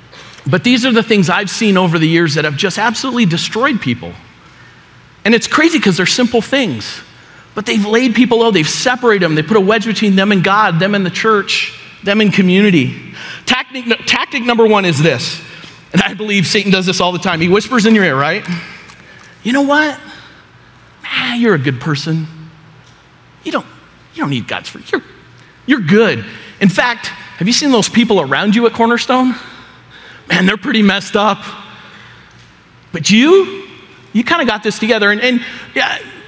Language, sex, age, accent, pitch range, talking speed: English, male, 40-59, American, 180-245 Hz, 185 wpm